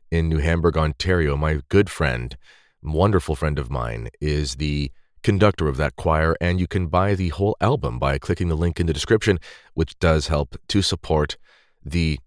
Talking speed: 180 wpm